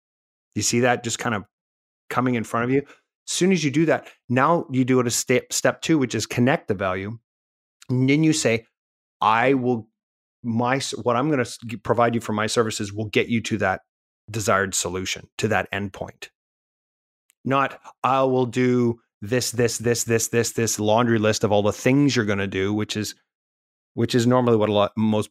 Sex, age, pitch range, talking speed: male, 30-49, 105-125 Hz, 205 wpm